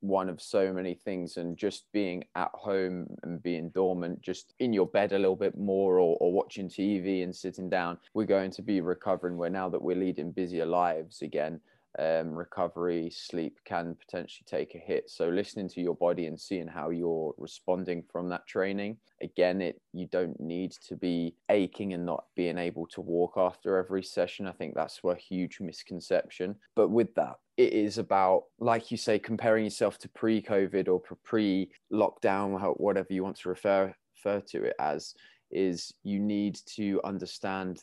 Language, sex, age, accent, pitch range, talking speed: English, male, 20-39, British, 85-100 Hz, 180 wpm